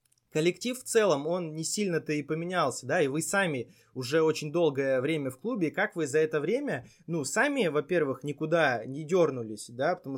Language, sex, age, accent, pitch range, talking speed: Russian, male, 20-39, native, 140-175 Hz, 185 wpm